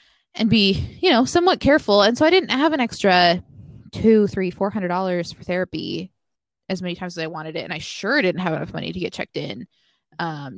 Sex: female